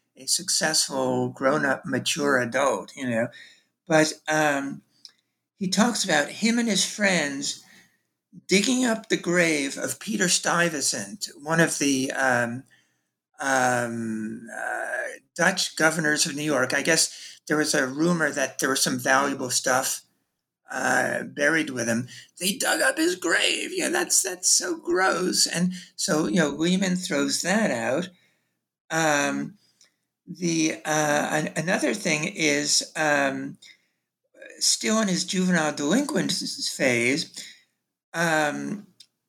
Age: 50-69